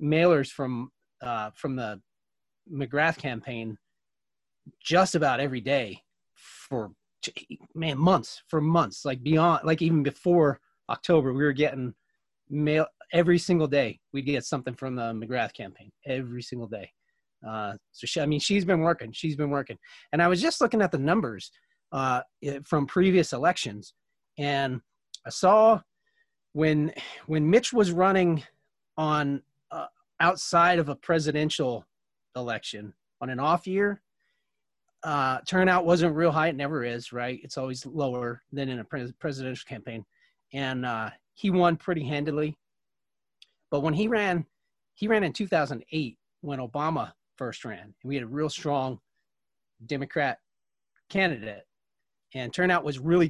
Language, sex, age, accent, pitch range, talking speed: English, male, 30-49, American, 130-175 Hz, 145 wpm